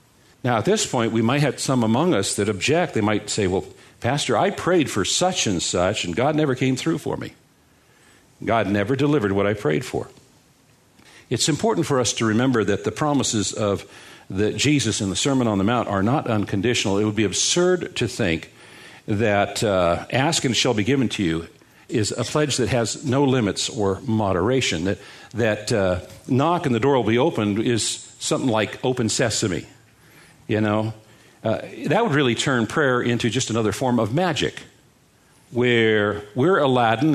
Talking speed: 185 wpm